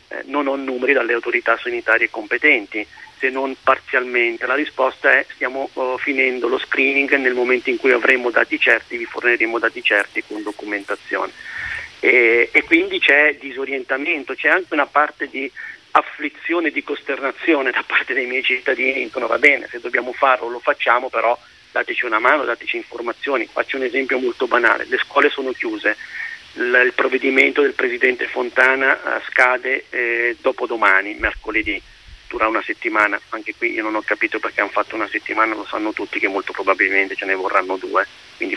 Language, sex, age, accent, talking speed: Italian, male, 40-59, native, 165 wpm